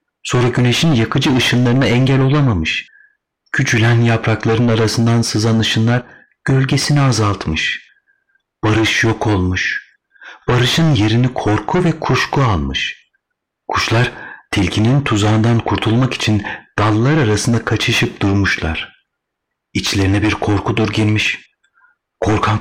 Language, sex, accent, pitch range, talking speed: Turkish, male, native, 105-125 Hz, 95 wpm